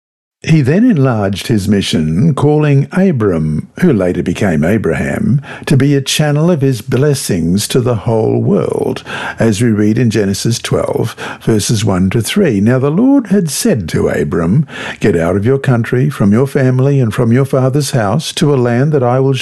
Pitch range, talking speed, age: 115-155 Hz, 180 wpm, 60-79